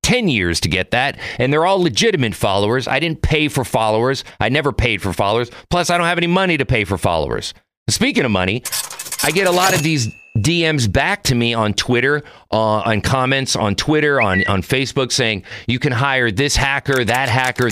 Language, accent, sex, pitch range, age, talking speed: English, American, male, 105-145 Hz, 40-59, 205 wpm